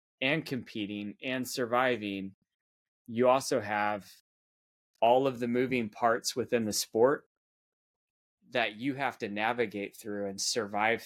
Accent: American